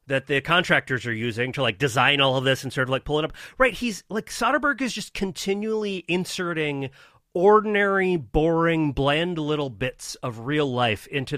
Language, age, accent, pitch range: English, 30-49, American, 115-170 Hz